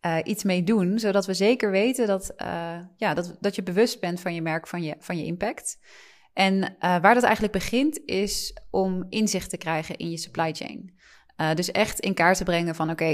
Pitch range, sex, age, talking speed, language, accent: 165-205 Hz, female, 20-39, 220 wpm, Dutch, Dutch